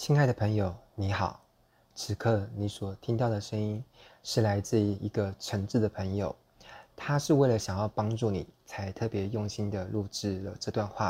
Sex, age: male, 20-39